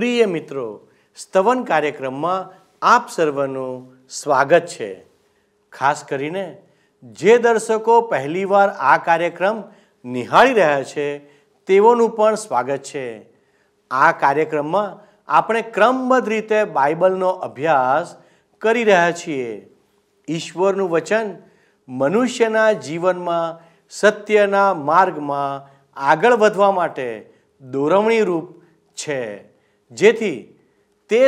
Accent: native